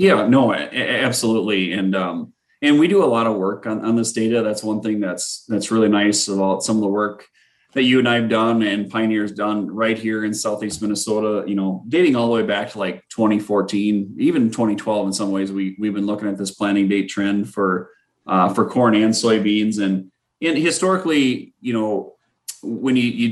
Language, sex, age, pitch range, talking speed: English, male, 30-49, 100-115 Hz, 205 wpm